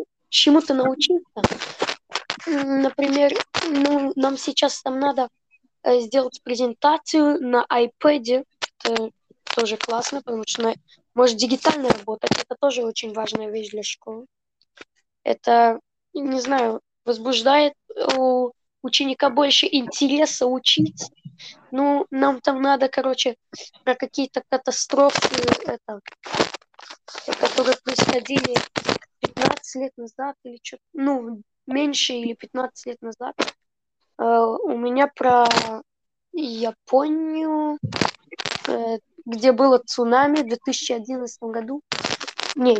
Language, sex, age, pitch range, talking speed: Russian, female, 20-39, 235-280 Hz, 100 wpm